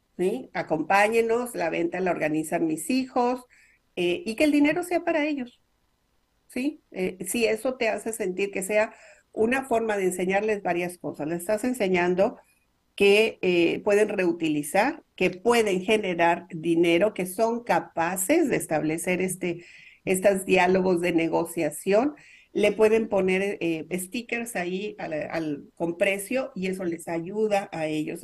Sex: female